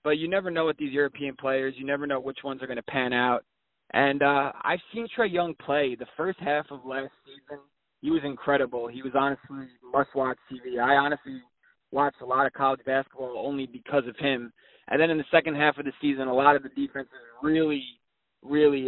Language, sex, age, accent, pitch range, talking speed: English, male, 20-39, American, 130-150 Hz, 215 wpm